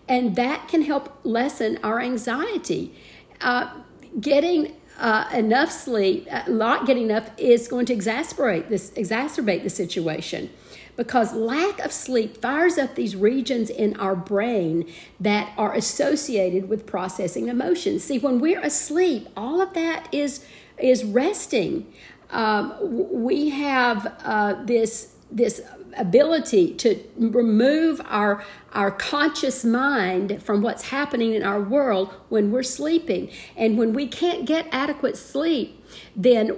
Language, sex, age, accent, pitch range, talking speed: English, female, 50-69, American, 215-280 Hz, 135 wpm